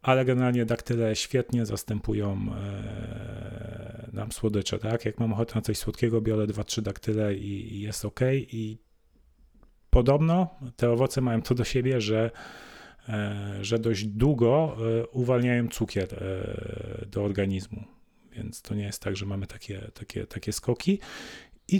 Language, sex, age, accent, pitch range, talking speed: Polish, male, 30-49, native, 105-125 Hz, 130 wpm